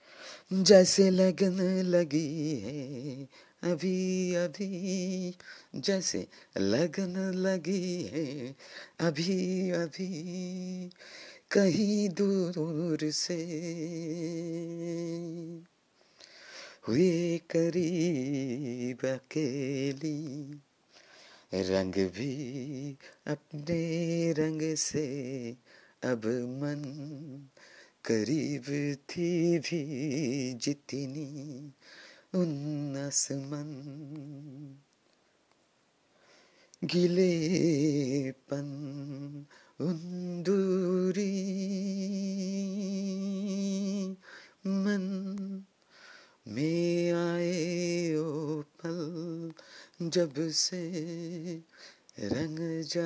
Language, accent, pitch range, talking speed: Bengali, native, 145-185 Hz, 35 wpm